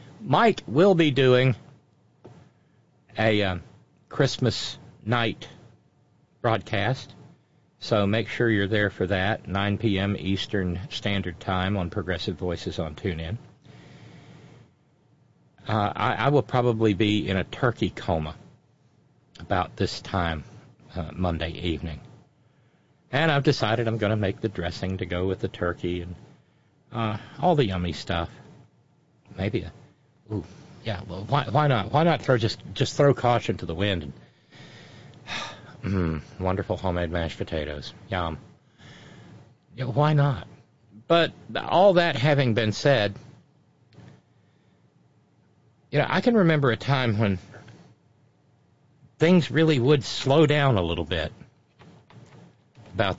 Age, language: 50-69, English